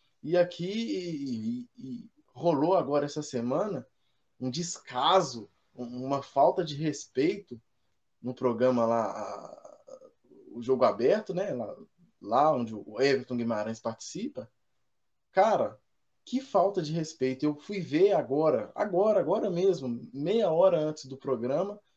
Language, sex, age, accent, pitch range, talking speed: Portuguese, male, 20-39, Brazilian, 125-205 Hz, 115 wpm